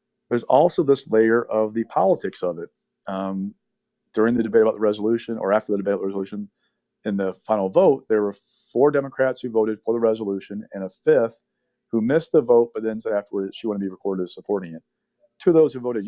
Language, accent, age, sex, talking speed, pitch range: English, American, 40-59, male, 225 wpm, 100-120 Hz